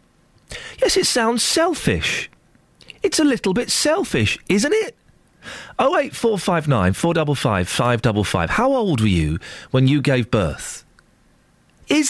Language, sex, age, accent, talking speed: English, male, 40-59, British, 110 wpm